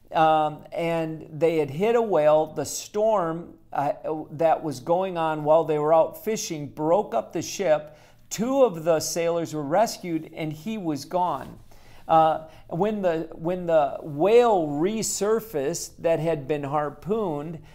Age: 50-69